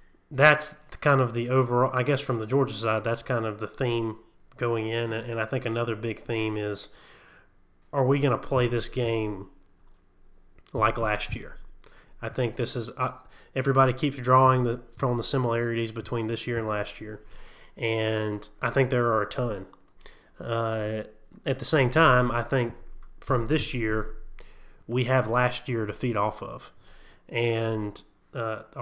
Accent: American